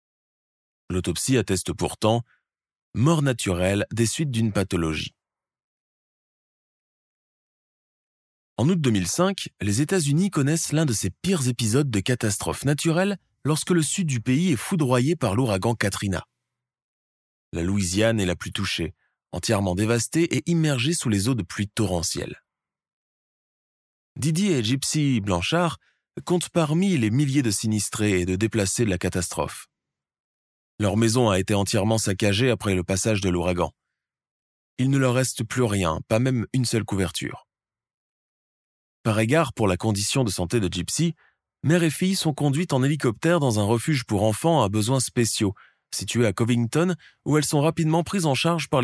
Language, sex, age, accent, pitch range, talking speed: French, male, 20-39, French, 95-150 Hz, 150 wpm